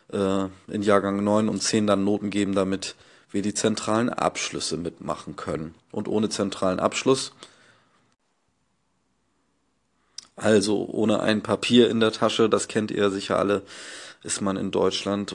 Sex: male